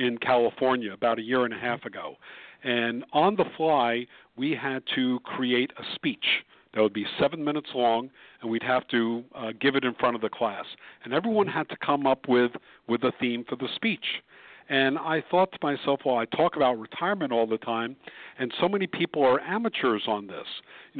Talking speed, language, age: 205 wpm, English, 50-69